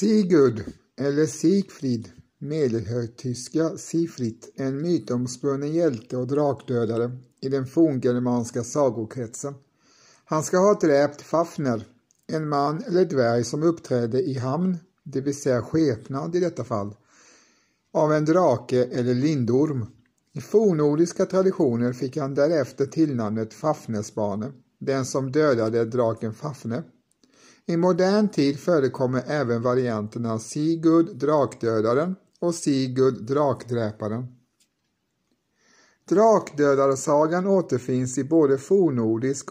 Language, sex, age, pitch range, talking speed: Swedish, male, 60-79, 120-155 Hz, 105 wpm